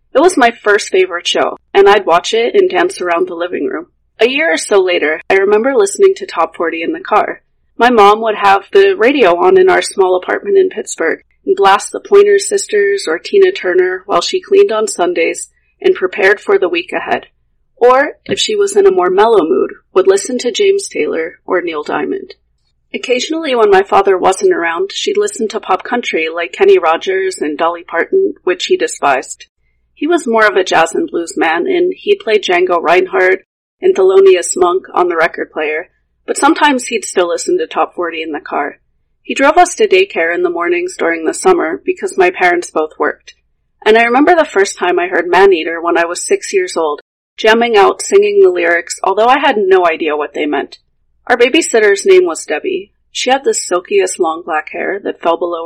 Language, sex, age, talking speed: English, female, 30-49, 205 wpm